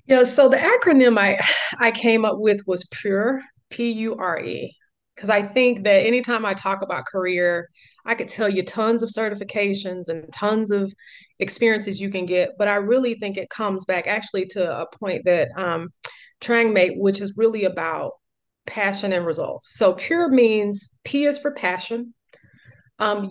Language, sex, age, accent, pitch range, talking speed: English, female, 30-49, American, 195-245 Hz, 165 wpm